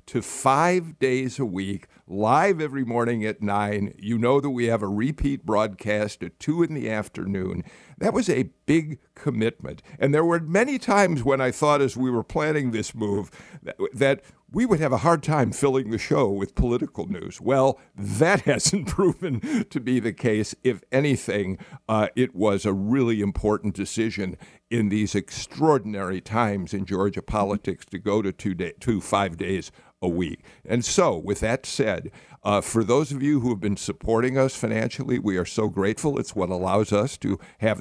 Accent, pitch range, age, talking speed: American, 105-140 Hz, 60-79, 185 wpm